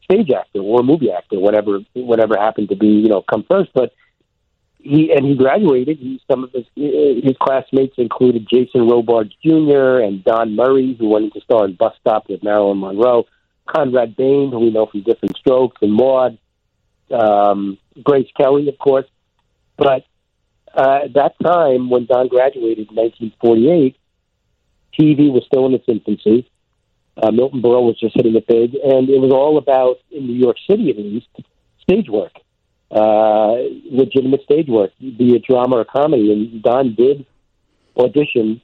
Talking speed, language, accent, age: 165 wpm, English, American, 50-69